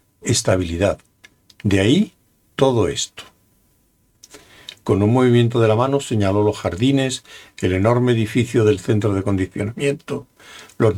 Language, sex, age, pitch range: Spanish, male, 60-79, 100-130 Hz